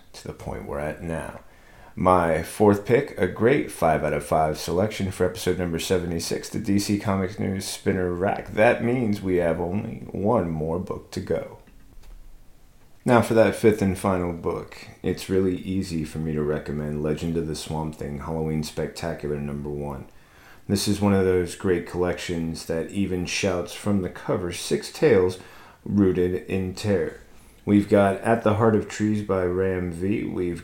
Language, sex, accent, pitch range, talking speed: English, male, American, 80-100 Hz, 170 wpm